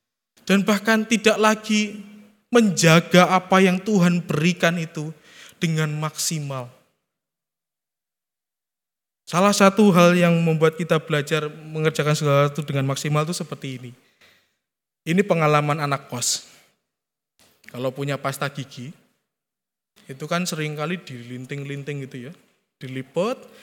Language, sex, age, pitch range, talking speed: Indonesian, male, 20-39, 140-210 Hz, 105 wpm